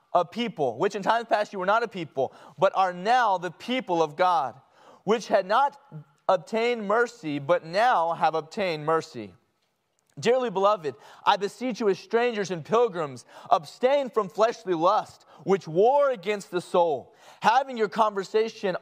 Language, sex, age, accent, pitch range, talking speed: English, male, 30-49, American, 175-230 Hz, 155 wpm